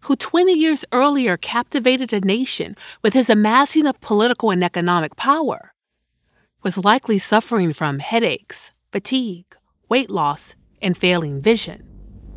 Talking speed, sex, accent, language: 125 wpm, female, American, English